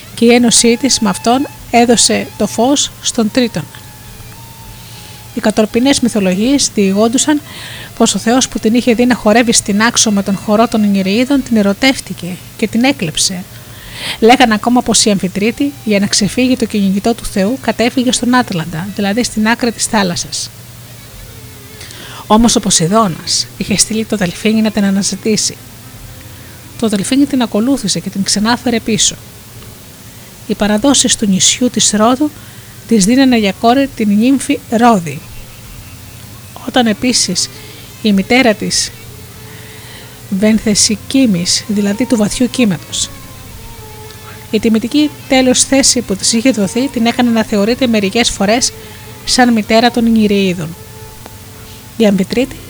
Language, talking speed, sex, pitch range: Greek, 130 wpm, female, 175-240 Hz